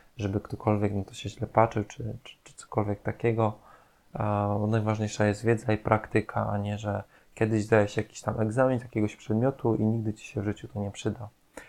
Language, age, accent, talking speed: Polish, 20-39, native, 195 wpm